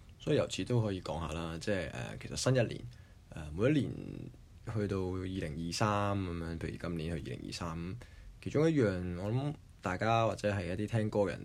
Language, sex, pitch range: Chinese, male, 85-110 Hz